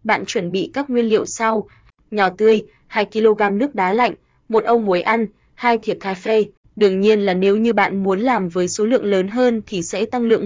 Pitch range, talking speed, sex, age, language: 195-225 Hz, 220 wpm, female, 20-39, Vietnamese